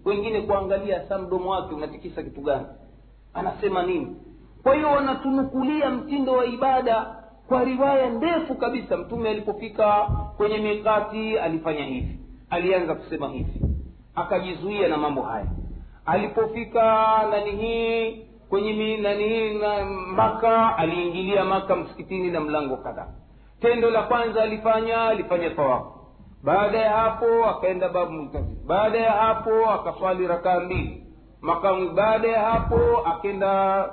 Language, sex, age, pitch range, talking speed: Swahili, male, 50-69, 190-230 Hz, 120 wpm